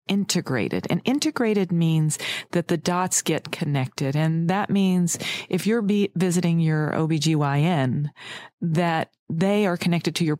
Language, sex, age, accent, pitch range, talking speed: English, female, 40-59, American, 150-185 Hz, 140 wpm